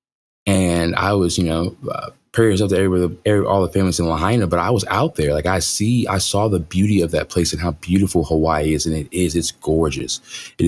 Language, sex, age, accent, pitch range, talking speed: English, male, 20-39, American, 85-100 Hz, 220 wpm